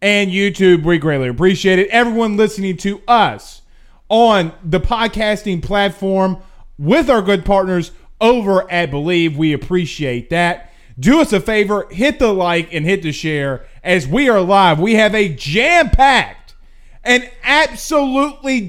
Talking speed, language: 145 wpm, English